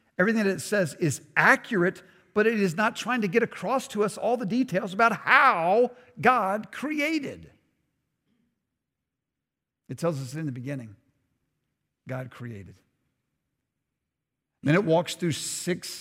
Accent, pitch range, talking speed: American, 145-185 Hz, 135 wpm